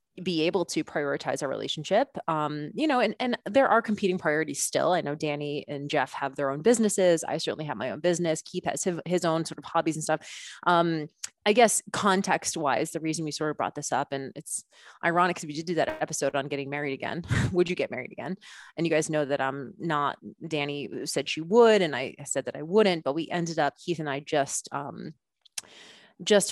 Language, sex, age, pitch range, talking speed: English, female, 30-49, 150-190 Hz, 225 wpm